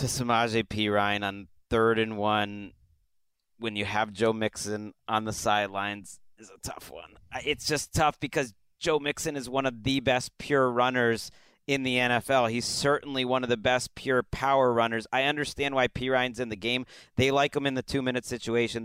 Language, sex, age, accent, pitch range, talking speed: English, male, 30-49, American, 115-135 Hz, 185 wpm